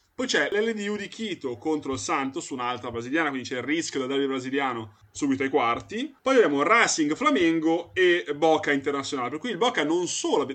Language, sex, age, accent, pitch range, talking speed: Italian, male, 30-49, native, 130-180 Hz, 195 wpm